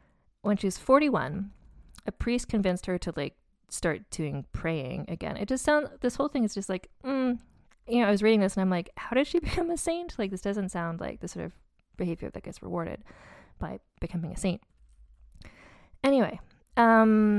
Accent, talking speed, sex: American, 195 wpm, female